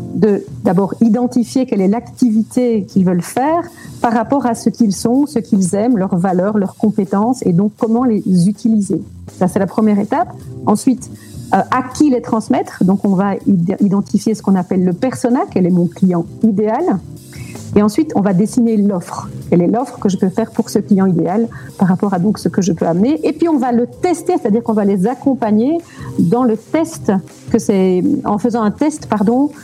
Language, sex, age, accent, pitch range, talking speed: French, female, 50-69, French, 190-240 Hz, 200 wpm